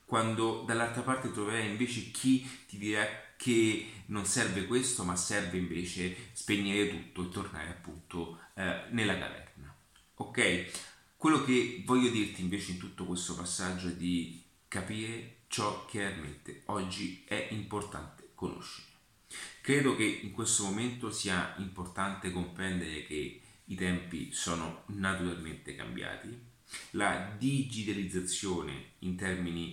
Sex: male